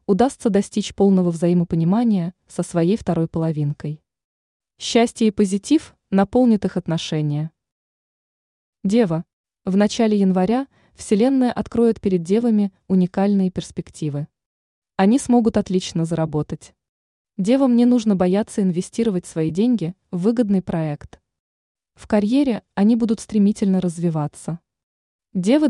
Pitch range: 165-215 Hz